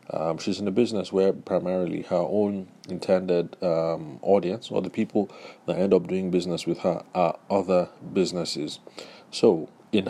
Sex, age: male, 30-49